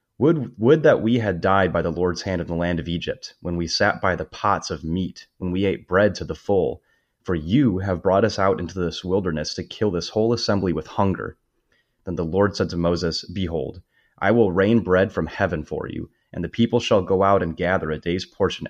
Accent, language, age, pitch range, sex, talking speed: American, English, 30-49, 85-100 Hz, male, 230 wpm